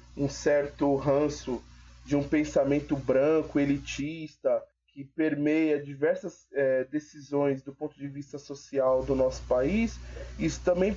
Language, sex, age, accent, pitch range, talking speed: Portuguese, male, 20-39, Brazilian, 145-185 Hz, 125 wpm